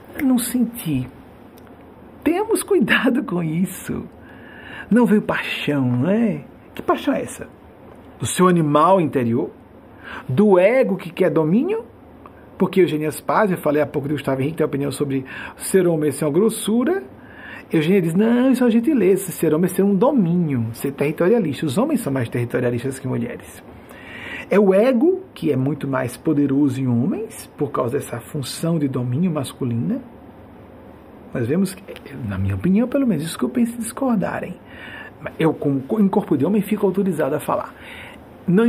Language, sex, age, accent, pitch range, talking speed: Portuguese, male, 50-69, Brazilian, 135-210 Hz, 165 wpm